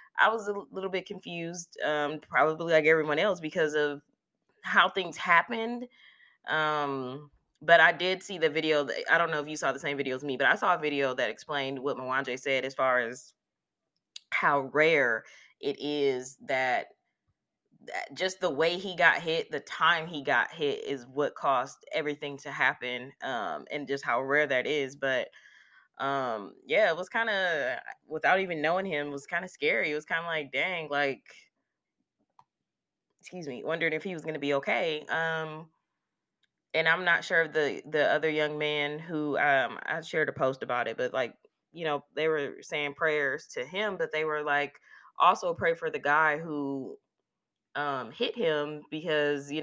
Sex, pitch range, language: female, 145-170 Hz, English